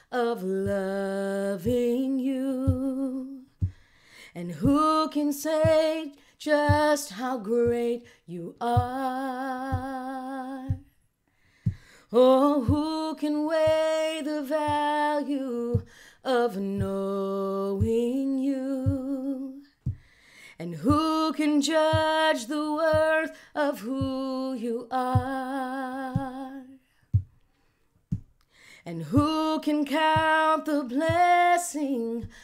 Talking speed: 70 wpm